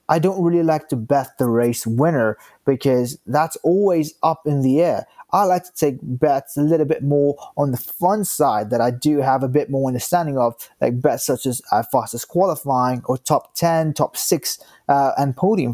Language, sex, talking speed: English, male, 200 wpm